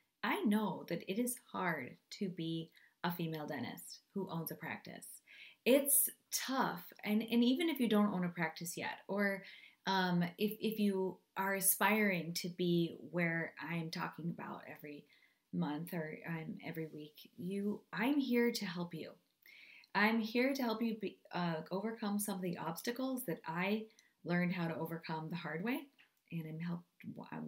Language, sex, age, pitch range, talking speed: English, female, 30-49, 170-225 Hz, 170 wpm